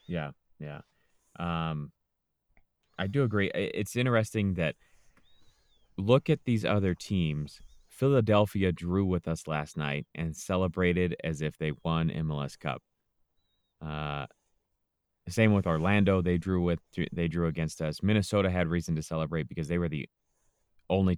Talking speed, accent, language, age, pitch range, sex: 140 wpm, American, English, 30-49, 75-90 Hz, male